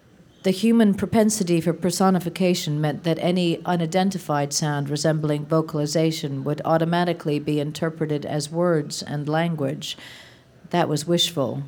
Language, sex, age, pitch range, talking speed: English, female, 50-69, 150-190 Hz, 120 wpm